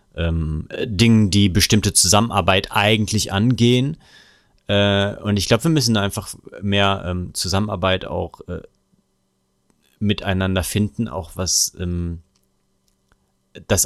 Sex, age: male, 30-49